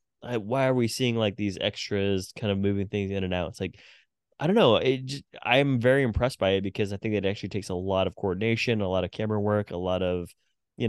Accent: American